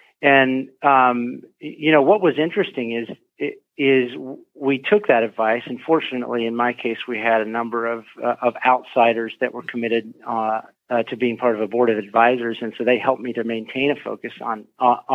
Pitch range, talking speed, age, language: 120-140 Hz, 200 wpm, 40-59, English